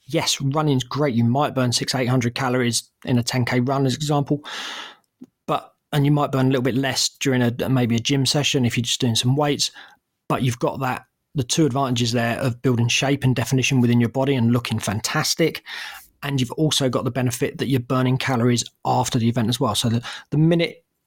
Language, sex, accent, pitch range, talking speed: English, male, British, 125-145 Hz, 215 wpm